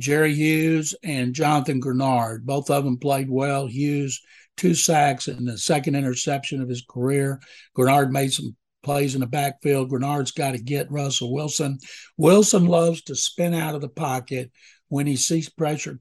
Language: English